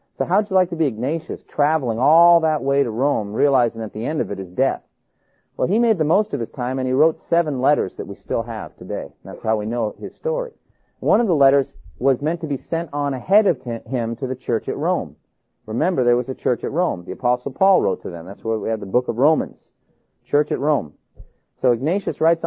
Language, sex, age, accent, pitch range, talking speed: English, male, 40-59, American, 125-180 Hz, 245 wpm